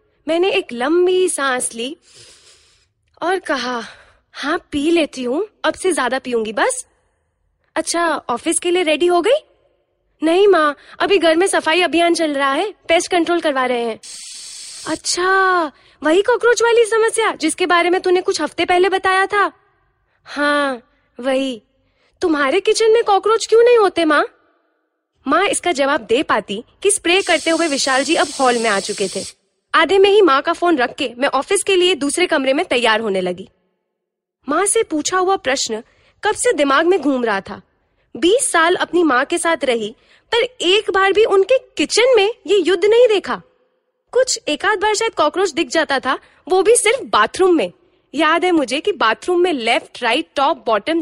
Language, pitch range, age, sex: Hindi, 285-395 Hz, 20-39, female